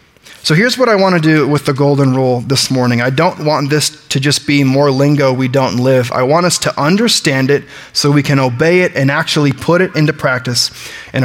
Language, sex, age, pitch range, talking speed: English, male, 30-49, 135-175 Hz, 230 wpm